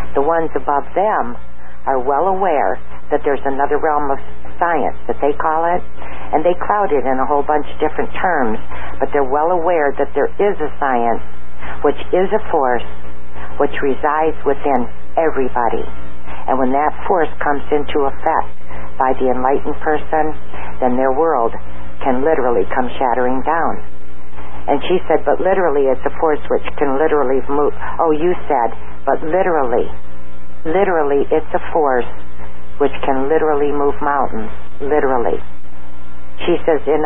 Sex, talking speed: female, 150 wpm